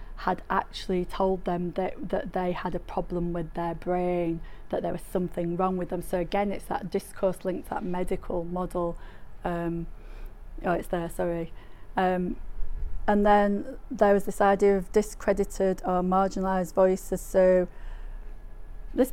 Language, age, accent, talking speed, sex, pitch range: English, 30-49, British, 155 wpm, female, 175-200 Hz